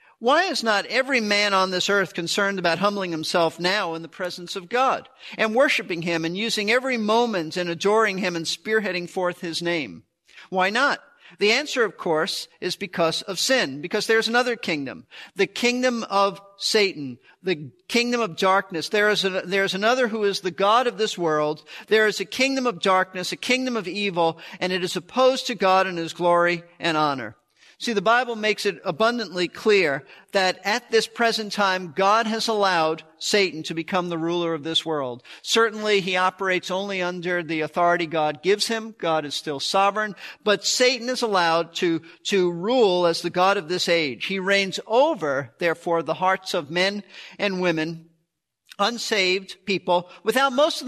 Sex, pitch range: male, 170-220 Hz